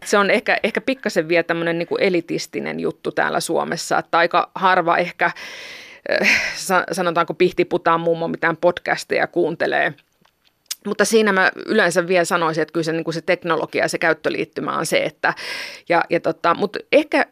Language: Finnish